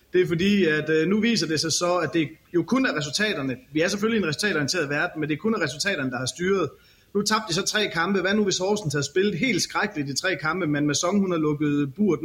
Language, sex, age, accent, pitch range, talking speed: Danish, male, 30-49, native, 150-195 Hz, 270 wpm